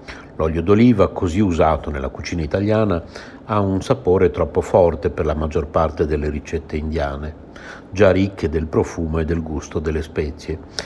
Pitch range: 85-115 Hz